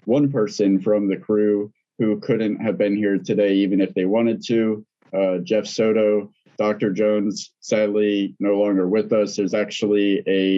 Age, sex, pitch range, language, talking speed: 20-39, male, 95-110 Hz, English, 165 wpm